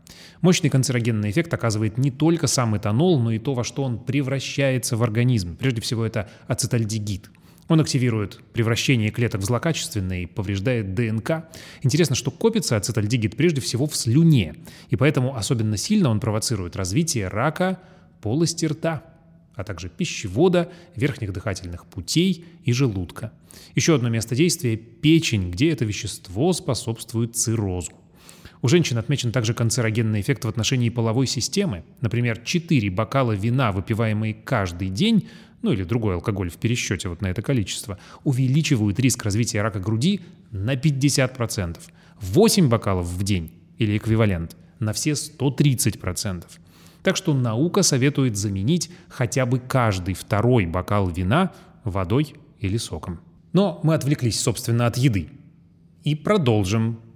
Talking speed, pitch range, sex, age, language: 140 wpm, 110-150 Hz, male, 20-39, Russian